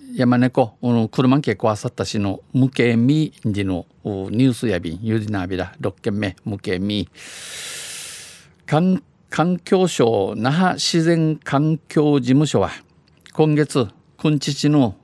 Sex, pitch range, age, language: male, 110-145 Hz, 50-69, Japanese